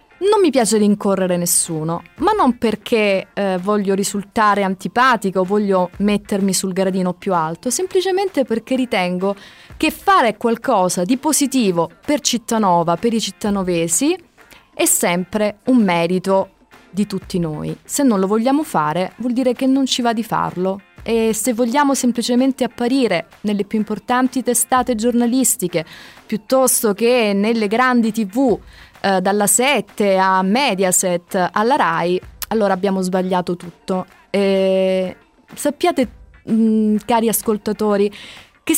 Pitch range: 190-255 Hz